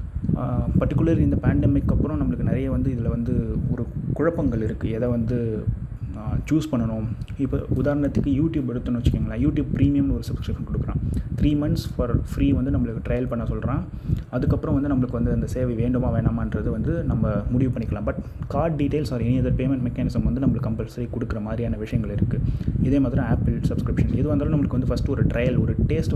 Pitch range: 115-140 Hz